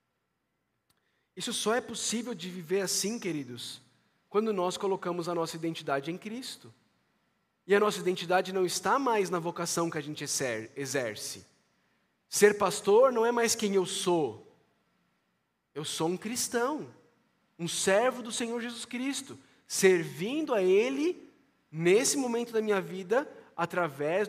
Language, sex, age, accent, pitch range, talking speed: Portuguese, male, 20-39, Brazilian, 150-220 Hz, 140 wpm